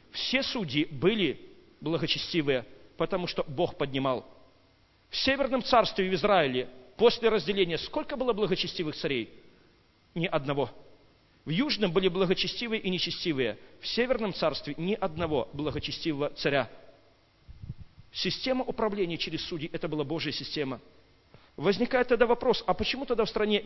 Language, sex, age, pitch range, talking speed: Russian, male, 40-59, 135-200 Hz, 130 wpm